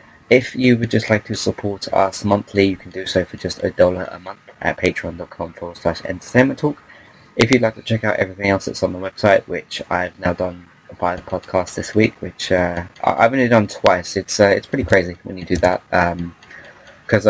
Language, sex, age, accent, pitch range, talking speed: English, male, 20-39, British, 90-110 Hz, 215 wpm